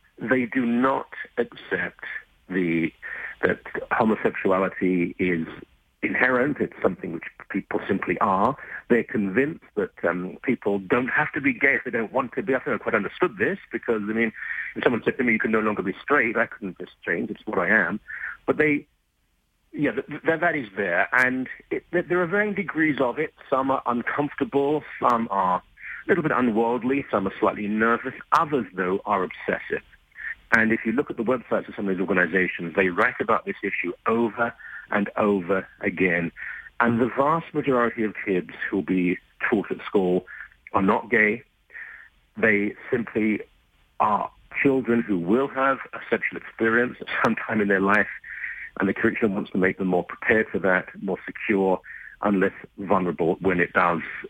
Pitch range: 95-135 Hz